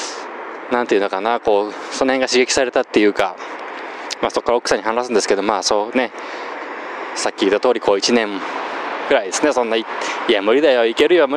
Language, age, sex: Japanese, 20-39, male